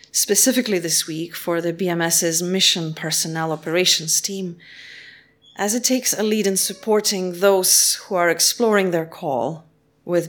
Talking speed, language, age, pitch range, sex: 140 wpm, English, 30-49, 150-190 Hz, female